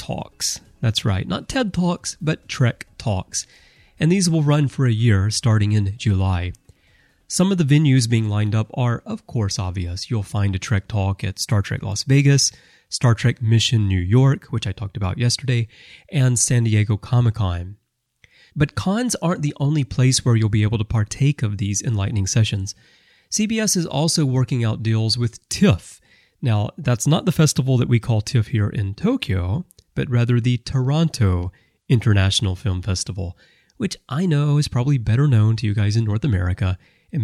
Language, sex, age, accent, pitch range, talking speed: English, male, 30-49, American, 105-140 Hz, 180 wpm